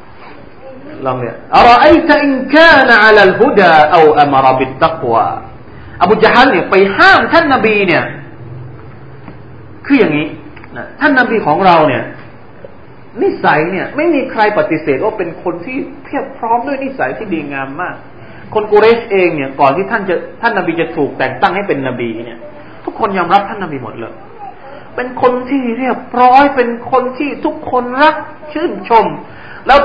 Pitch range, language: 170-275 Hz, Thai